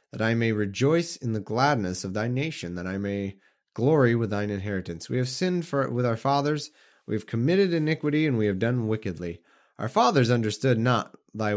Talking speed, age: 190 wpm, 30-49